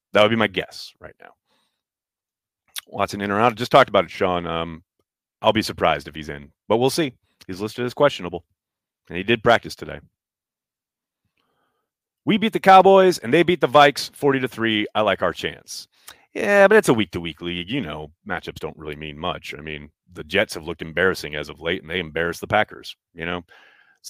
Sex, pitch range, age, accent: male, 85-135 Hz, 30-49, American